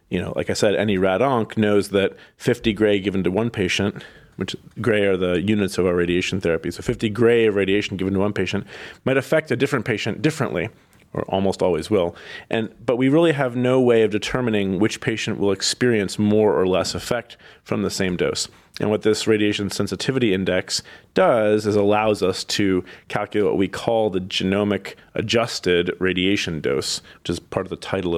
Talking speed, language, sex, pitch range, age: 190 wpm, English, male, 95-115 Hz, 40-59